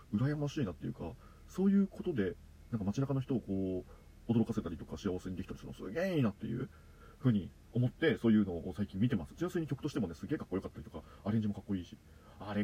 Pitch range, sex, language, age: 90-145 Hz, male, Japanese, 40-59